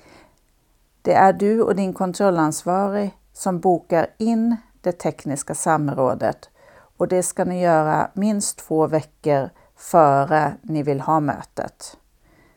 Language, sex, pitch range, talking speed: Swedish, female, 155-200 Hz, 120 wpm